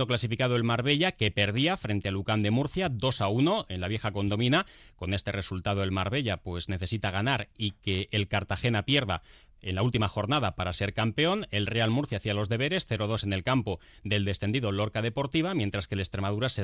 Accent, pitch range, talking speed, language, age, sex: Spanish, 100-130 Hz, 200 wpm, Spanish, 30-49, male